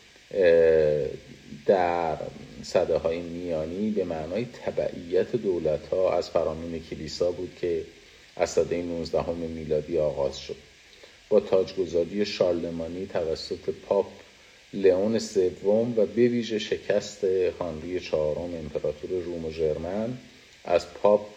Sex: male